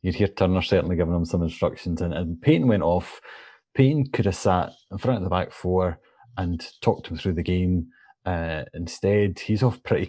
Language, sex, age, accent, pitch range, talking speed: English, male, 30-49, British, 85-100 Hz, 200 wpm